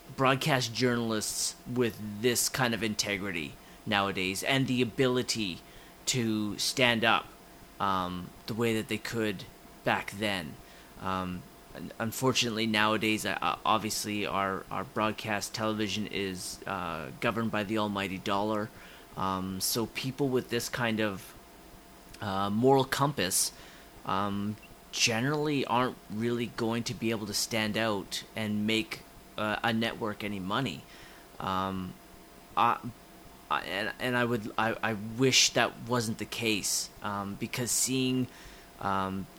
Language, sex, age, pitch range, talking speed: English, male, 30-49, 100-120 Hz, 125 wpm